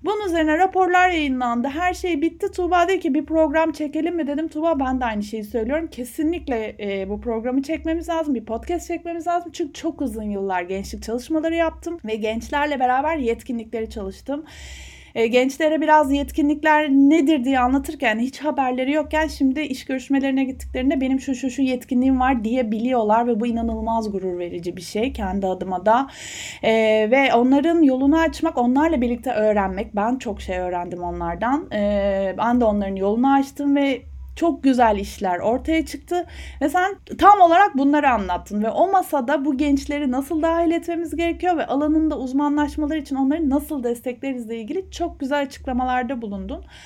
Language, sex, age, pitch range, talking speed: Turkish, female, 30-49, 225-315 Hz, 160 wpm